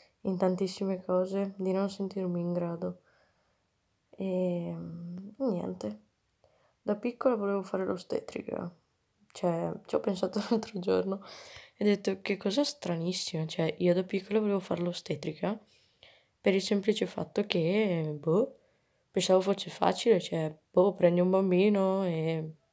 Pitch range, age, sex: 175-195 Hz, 20-39, female